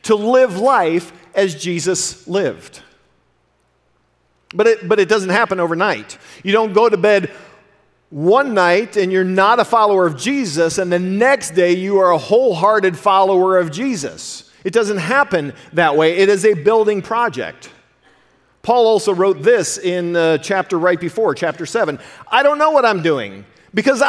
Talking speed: 160 wpm